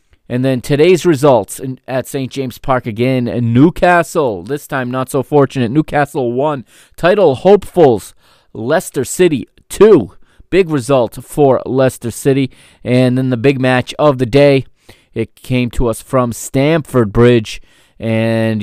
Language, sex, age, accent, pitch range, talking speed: English, male, 30-49, American, 115-140 Hz, 140 wpm